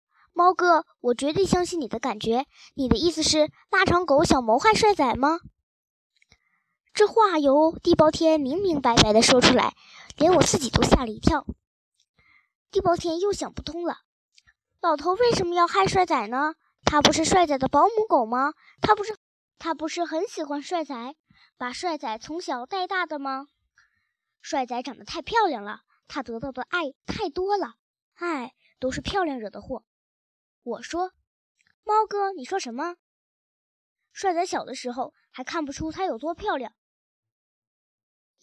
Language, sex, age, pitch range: Chinese, male, 10-29, 255-360 Hz